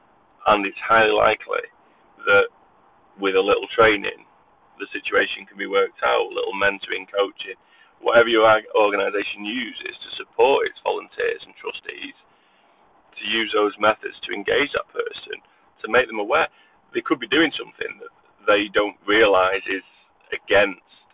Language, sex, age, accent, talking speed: English, male, 30-49, British, 150 wpm